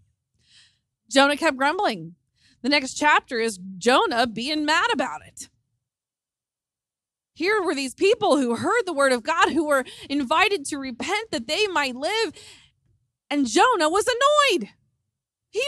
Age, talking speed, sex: 20-39, 140 wpm, female